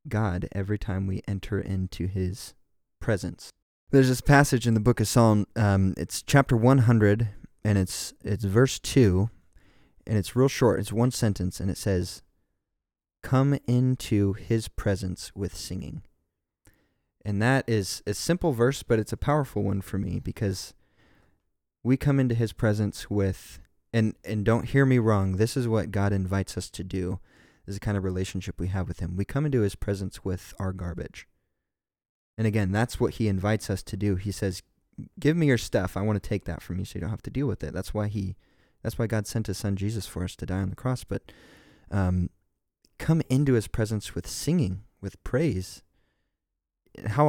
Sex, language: male, English